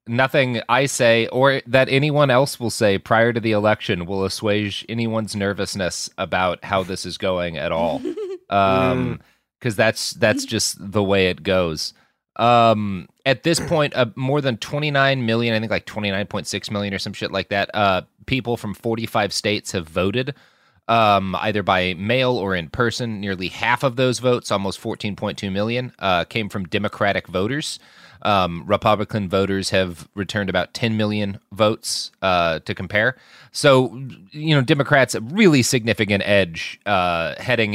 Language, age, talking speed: English, 30-49, 160 wpm